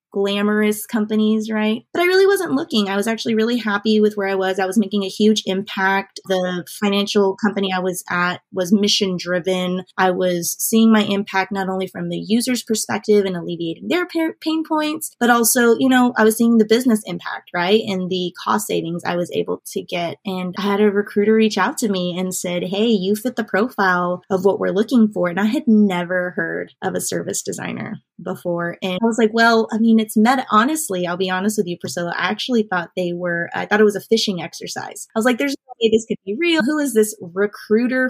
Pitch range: 185-225 Hz